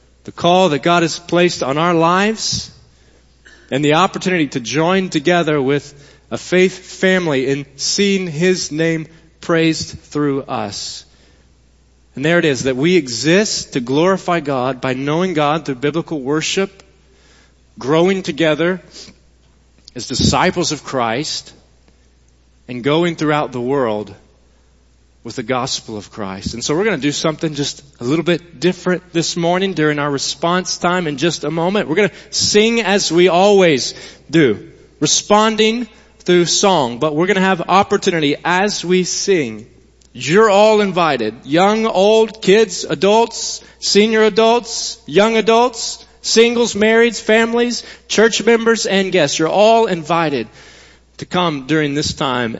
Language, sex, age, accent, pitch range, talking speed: English, male, 40-59, American, 130-190 Hz, 145 wpm